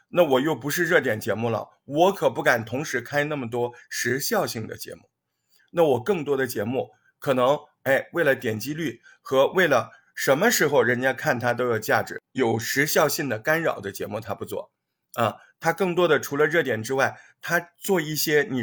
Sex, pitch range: male, 115-165 Hz